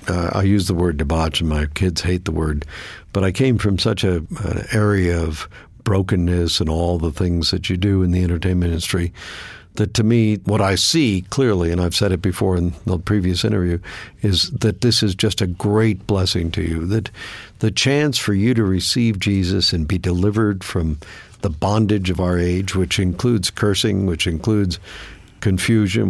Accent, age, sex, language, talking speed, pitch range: American, 60-79, male, English, 190 wpm, 90-110 Hz